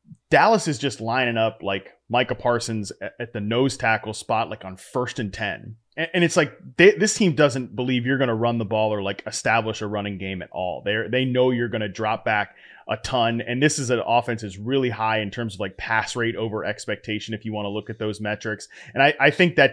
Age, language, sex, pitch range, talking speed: 30-49, English, male, 110-140 Hz, 240 wpm